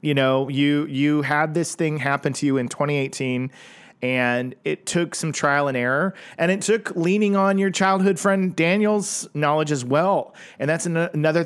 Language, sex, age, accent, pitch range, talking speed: English, male, 40-59, American, 130-160 Hz, 185 wpm